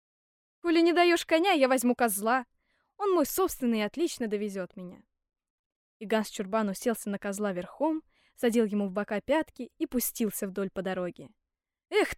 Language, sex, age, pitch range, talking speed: Russian, female, 10-29, 210-295 Hz, 150 wpm